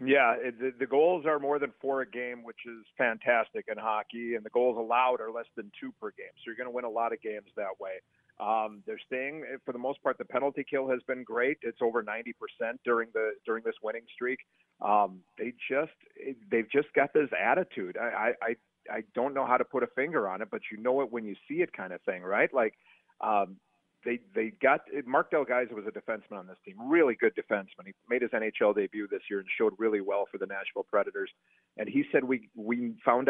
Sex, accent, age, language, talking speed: male, American, 40-59, English, 230 wpm